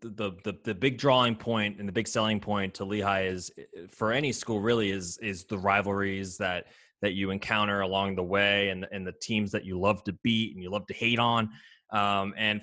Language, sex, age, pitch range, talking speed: English, male, 20-39, 100-120 Hz, 220 wpm